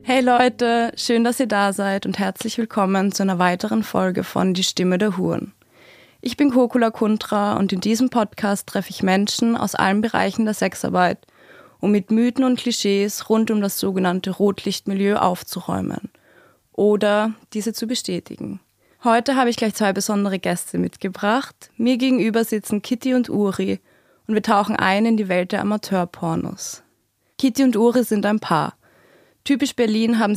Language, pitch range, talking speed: German, 195-230 Hz, 160 wpm